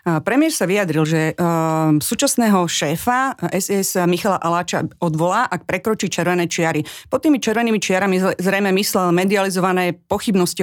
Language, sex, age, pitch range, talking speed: Slovak, female, 30-49, 170-210 Hz, 130 wpm